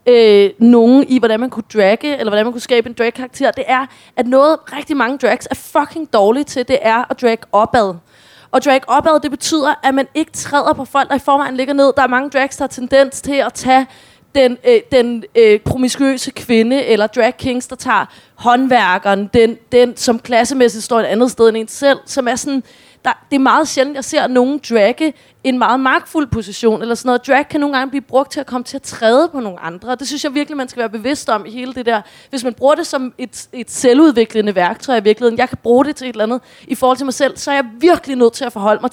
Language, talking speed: Danish, 245 wpm